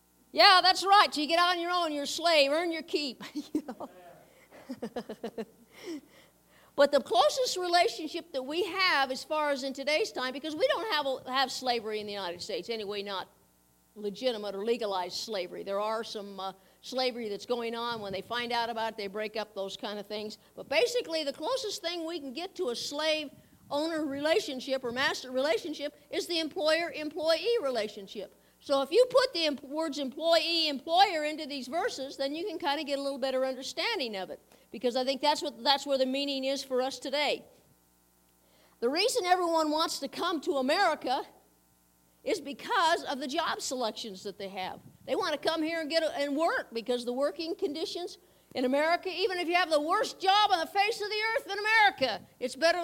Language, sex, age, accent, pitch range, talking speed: English, female, 50-69, American, 235-330 Hz, 190 wpm